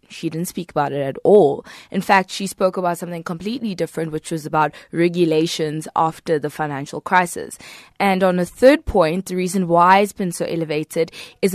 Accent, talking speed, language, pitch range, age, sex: South African, 185 wpm, English, 165-205 Hz, 20-39, female